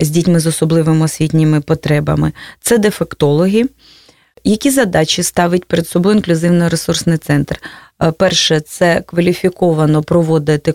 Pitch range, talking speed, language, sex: 155-190 Hz, 105 wpm, Russian, female